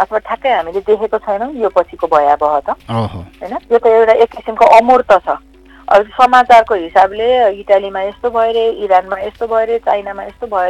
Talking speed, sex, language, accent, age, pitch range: 165 wpm, female, English, Indian, 50-69, 190-250 Hz